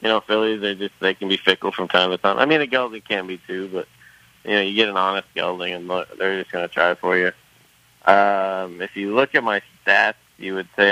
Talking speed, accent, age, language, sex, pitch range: 260 wpm, American, 20-39, English, male, 95-100 Hz